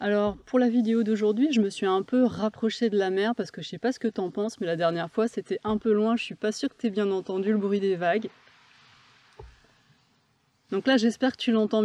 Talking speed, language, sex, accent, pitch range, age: 250 wpm, French, female, French, 180-220 Hz, 20-39